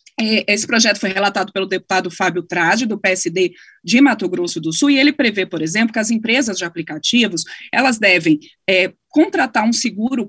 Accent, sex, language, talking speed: Brazilian, female, Portuguese, 180 wpm